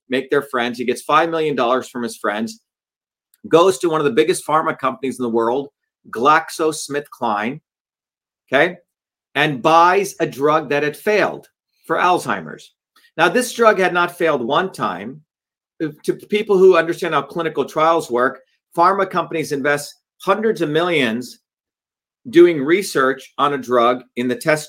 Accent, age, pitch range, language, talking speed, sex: American, 40-59, 145-210 Hz, English, 150 wpm, male